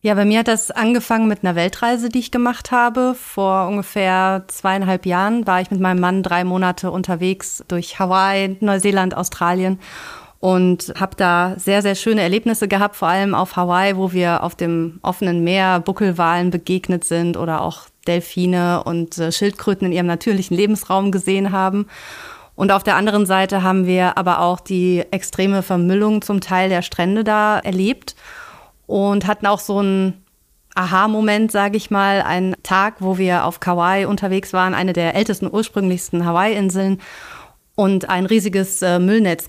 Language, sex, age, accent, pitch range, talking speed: German, female, 30-49, German, 180-200 Hz, 160 wpm